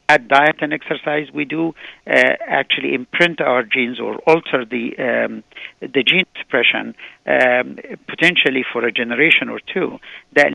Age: 50-69